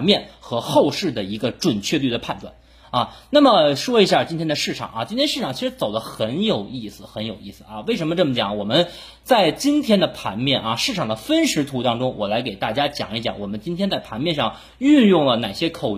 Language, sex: Chinese, male